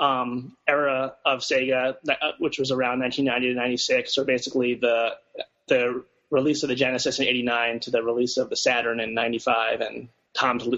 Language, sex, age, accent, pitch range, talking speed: English, male, 30-49, American, 125-145 Hz, 165 wpm